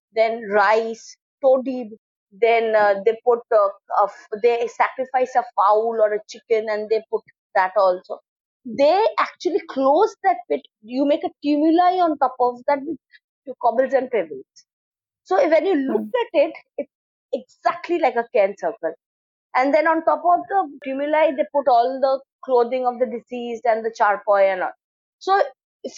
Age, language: 20-39, English